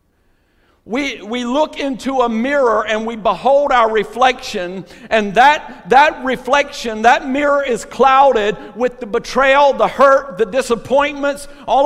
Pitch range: 235-295 Hz